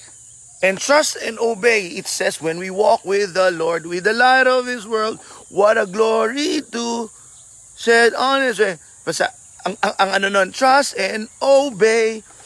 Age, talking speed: 30-49, 150 wpm